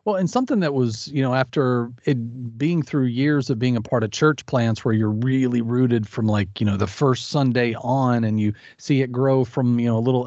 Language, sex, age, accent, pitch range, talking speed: English, male, 40-59, American, 125-165 Hz, 240 wpm